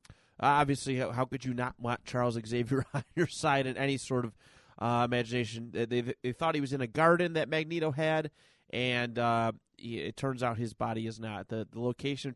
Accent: American